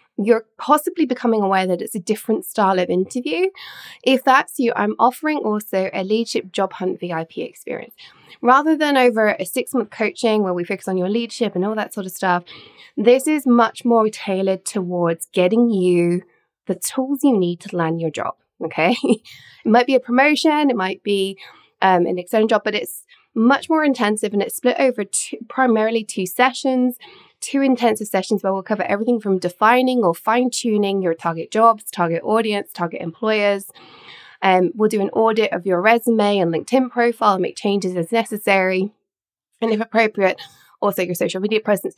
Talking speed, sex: 175 wpm, female